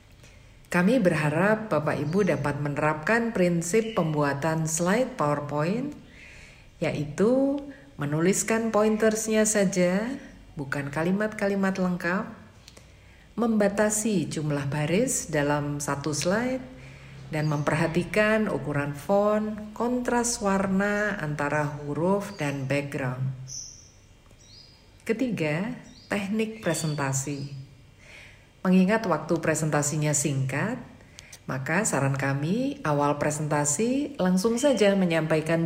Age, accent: 50-69, native